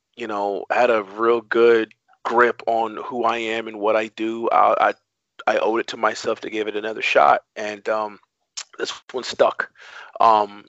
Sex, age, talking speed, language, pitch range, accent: male, 30-49, 185 wpm, English, 105-115 Hz, American